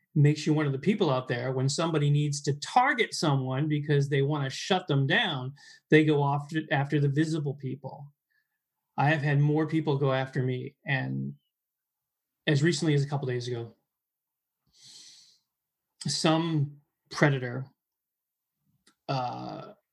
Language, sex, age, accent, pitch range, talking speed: English, male, 30-49, American, 145-185 Hz, 140 wpm